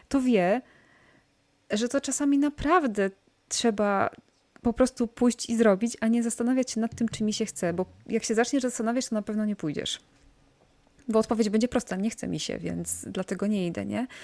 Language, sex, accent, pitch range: Polish, female, native, 205-235 Hz